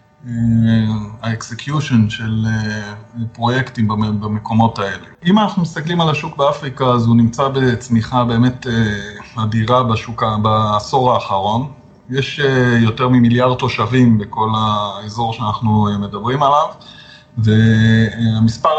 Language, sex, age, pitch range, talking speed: Hebrew, male, 20-39, 115-140 Hz, 115 wpm